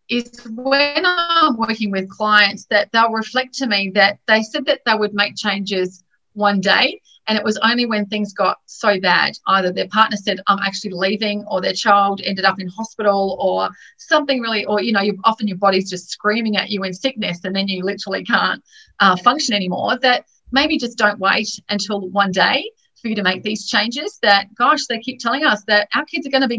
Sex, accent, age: female, Australian, 30-49